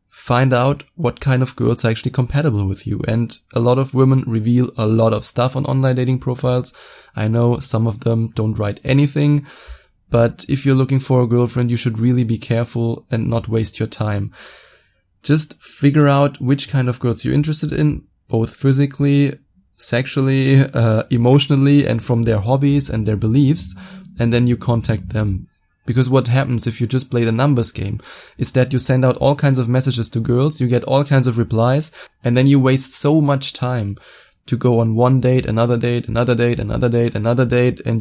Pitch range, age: 115-140 Hz, 20-39